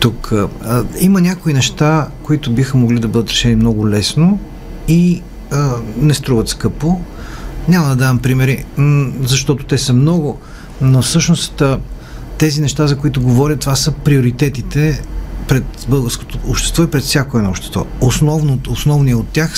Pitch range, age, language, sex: 115-155 Hz, 50-69, Bulgarian, male